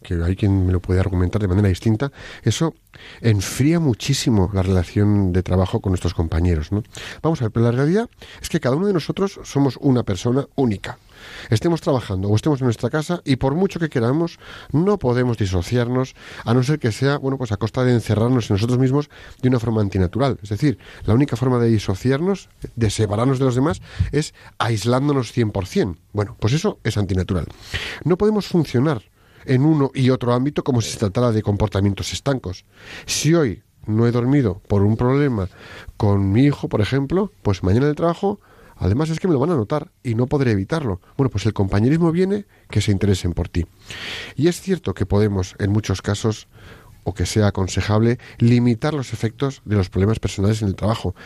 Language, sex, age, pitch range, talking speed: Spanish, male, 40-59, 100-140 Hz, 195 wpm